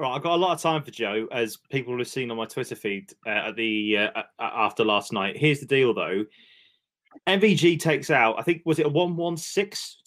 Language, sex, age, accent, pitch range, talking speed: English, male, 20-39, British, 115-155 Hz, 220 wpm